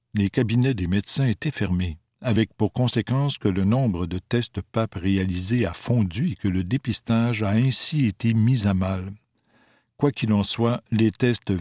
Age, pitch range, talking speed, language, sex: 60-79, 100-125 Hz, 175 wpm, French, male